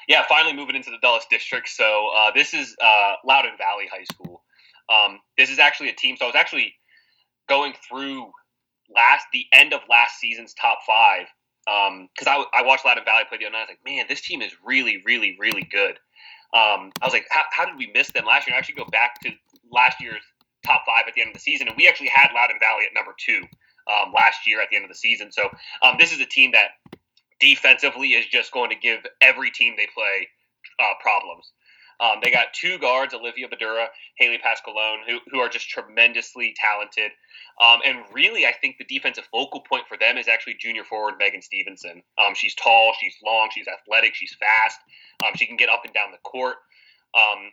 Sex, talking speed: male, 220 wpm